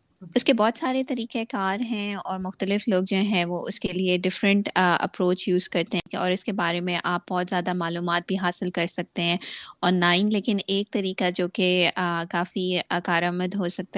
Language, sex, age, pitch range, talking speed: Urdu, female, 20-39, 170-195 Hz, 205 wpm